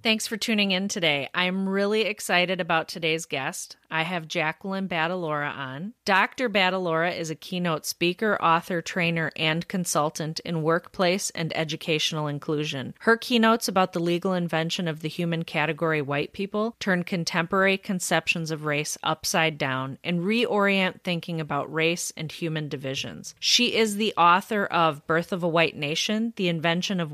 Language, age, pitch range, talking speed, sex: English, 30-49, 160-190 Hz, 155 wpm, female